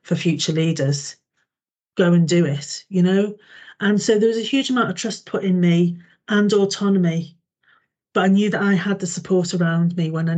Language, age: English, 40-59